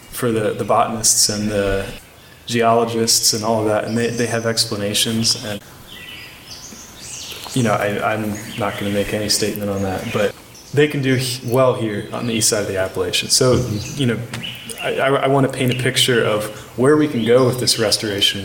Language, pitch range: English, 100-115 Hz